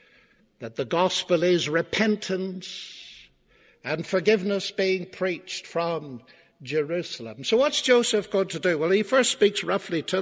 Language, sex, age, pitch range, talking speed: English, male, 60-79, 180-245 Hz, 135 wpm